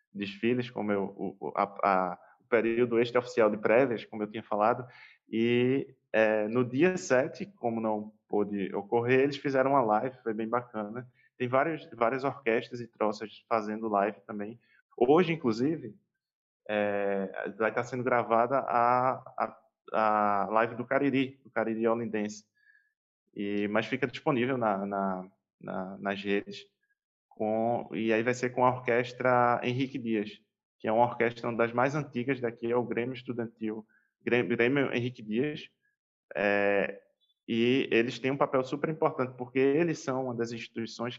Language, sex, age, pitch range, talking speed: Portuguese, male, 20-39, 105-125 Hz, 155 wpm